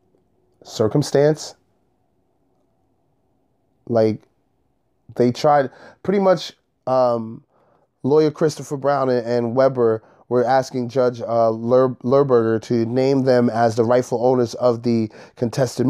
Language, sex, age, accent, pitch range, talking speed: English, male, 20-39, American, 115-140 Hz, 110 wpm